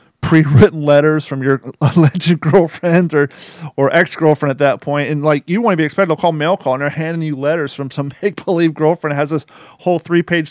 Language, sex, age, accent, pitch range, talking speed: English, male, 30-49, American, 135-160 Hz, 215 wpm